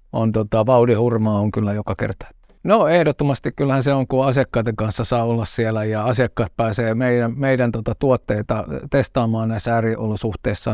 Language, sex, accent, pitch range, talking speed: Finnish, male, native, 105-125 Hz, 160 wpm